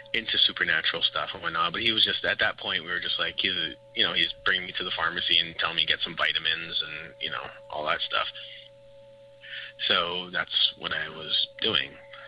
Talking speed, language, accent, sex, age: 210 wpm, English, American, male, 30-49